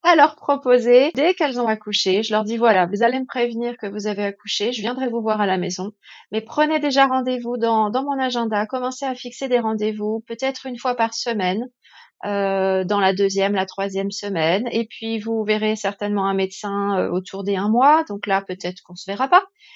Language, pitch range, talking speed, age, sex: French, 200-245 Hz, 215 wpm, 30-49, female